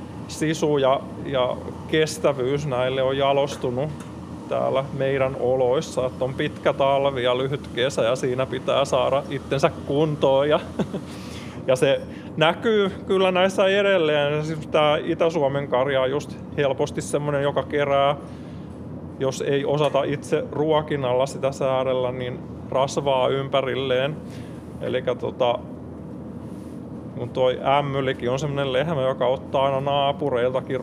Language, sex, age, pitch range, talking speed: Finnish, male, 20-39, 130-150 Hz, 110 wpm